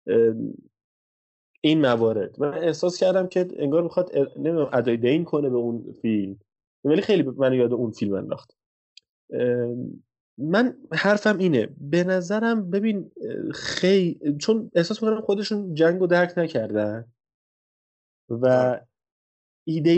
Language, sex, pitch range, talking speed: Persian, male, 120-185 Hz, 115 wpm